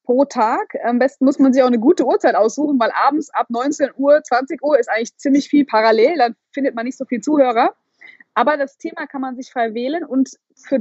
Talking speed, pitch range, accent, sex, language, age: 230 wpm, 230-290 Hz, German, female, German, 20-39